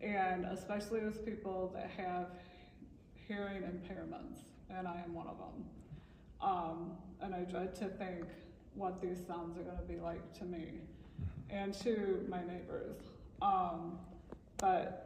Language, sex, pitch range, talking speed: English, female, 180-200 Hz, 140 wpm